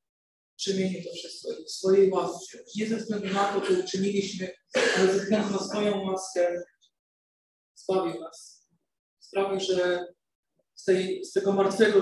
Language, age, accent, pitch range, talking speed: Polish, 40-59, native, 190-230 Hz, 135 wpm